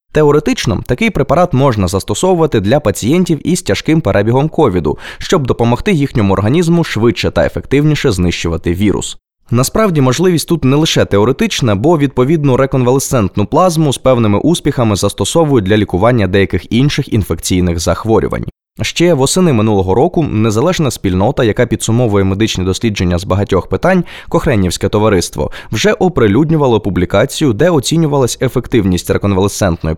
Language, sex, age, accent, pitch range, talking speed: Ukrainian, male, 20-39, native, 100-150 Hz, 125 wpm